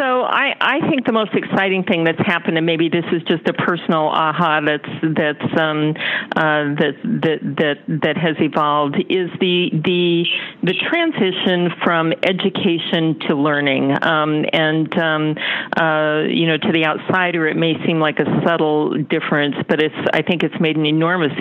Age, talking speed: 50-69, 170 wpm